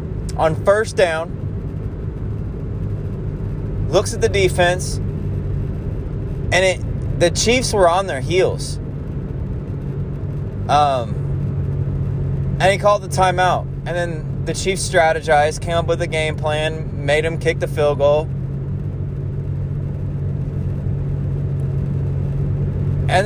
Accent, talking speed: American, 100 wpm